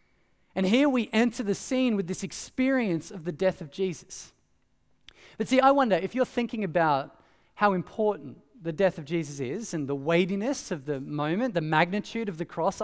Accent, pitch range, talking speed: Australian, 175-230 Hz, 185 wpm